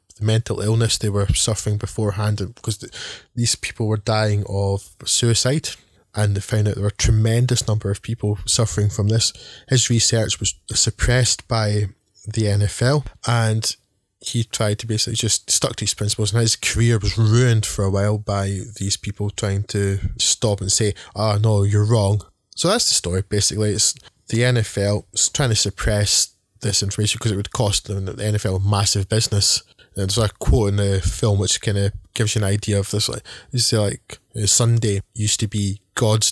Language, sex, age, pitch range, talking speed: English, male, 20-39, 100-110 Hz, 190 wpm